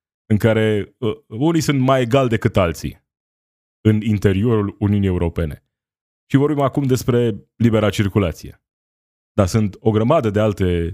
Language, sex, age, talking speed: Romanian, male, 20-39, 135 wpm